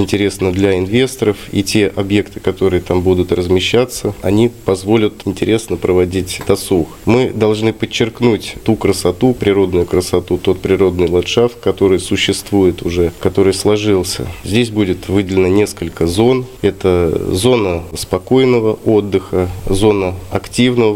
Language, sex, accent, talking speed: Russian, male, native, 115 wpm